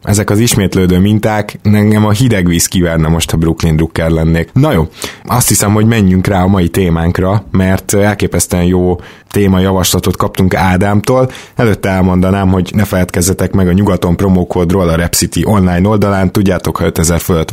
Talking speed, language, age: 160 wpm, Hungarian, 20-39